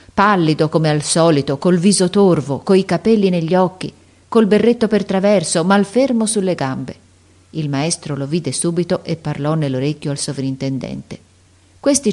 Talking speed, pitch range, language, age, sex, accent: 145 wpm, 140-185 Hz, Italian, 40-59, female, native